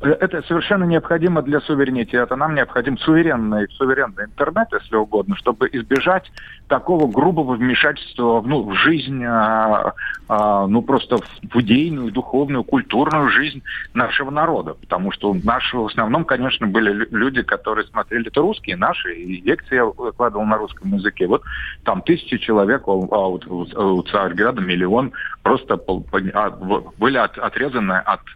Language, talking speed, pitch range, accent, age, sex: Russian, 130 wpm, 115-155 Hz, native, 40-59, male